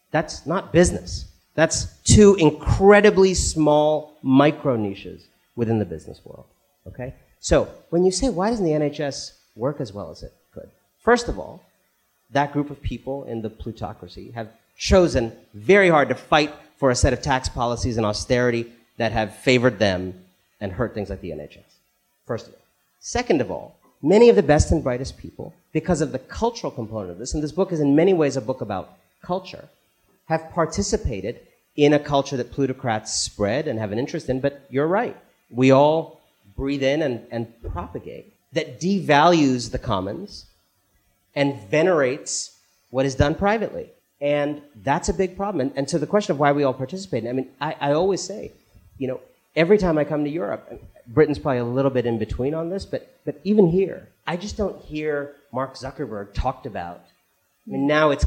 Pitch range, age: 110-155 Hz, 40-59